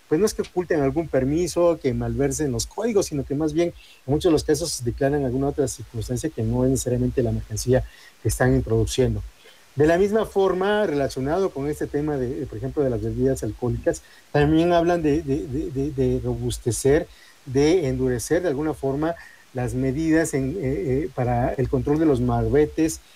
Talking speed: 190 wpm